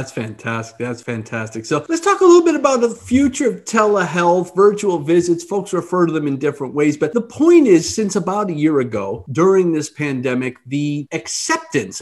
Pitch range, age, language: 125-180 Hz, 40-59, English